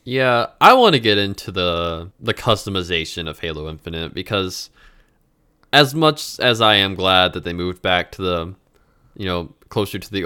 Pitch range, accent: 90-115 Hz, American